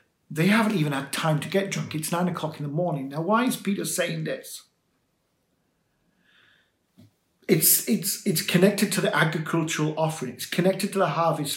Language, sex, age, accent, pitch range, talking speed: English, male, 50-69, British, 150-185 Hz, 170 wpm